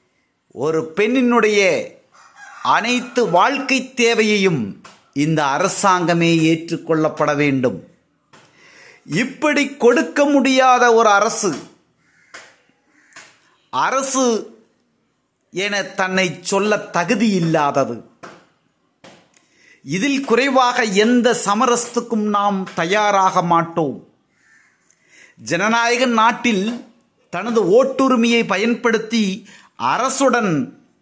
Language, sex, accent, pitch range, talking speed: Tamil, male, native, 185-260 Hz, 65 wpm